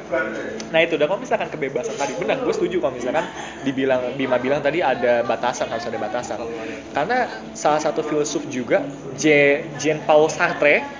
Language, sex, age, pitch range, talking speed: Indonesian, male, 20-39, 150-225 Hz, 155 wpm